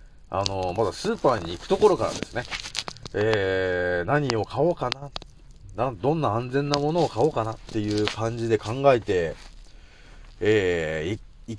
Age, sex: 30-49, male